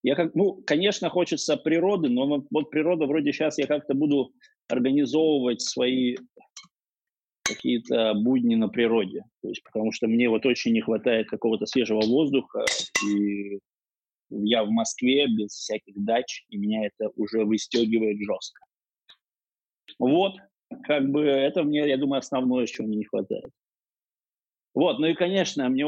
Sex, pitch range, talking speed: male, 110-145 Hz, 145 wpm